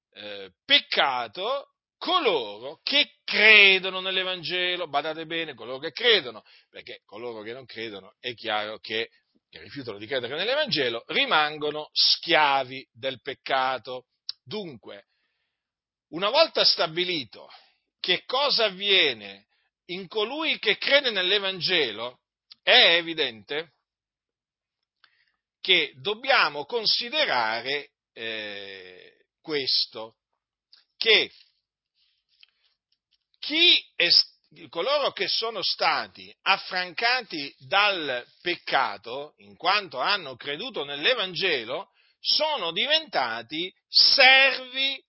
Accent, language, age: native, Italian, 40-59